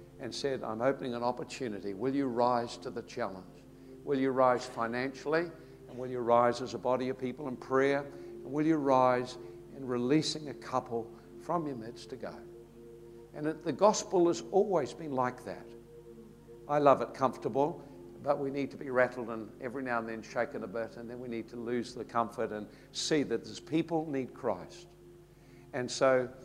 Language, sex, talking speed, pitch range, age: English, male, 190 wpm, 115-140 Hz, 60-79